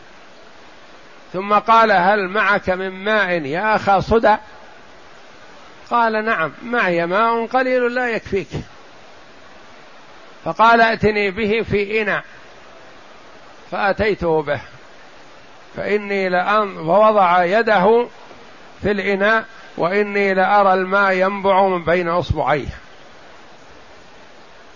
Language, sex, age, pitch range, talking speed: Arabic, male, 50-69, 175-210 Hz, 90 wpm